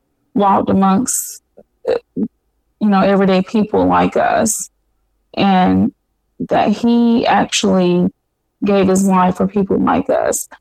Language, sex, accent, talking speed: English, female, American, 105 wpm